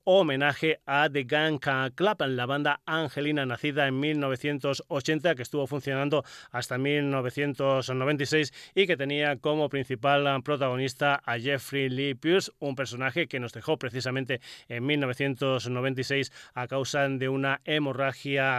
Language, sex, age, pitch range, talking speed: Spanish, male, 30-49, 135-155 Hz, 125 wpm